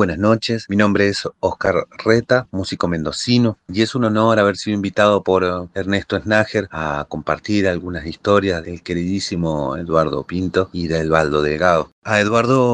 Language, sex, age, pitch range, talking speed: Spanish, male, 30-49, 95-115 Hz, 155 wpm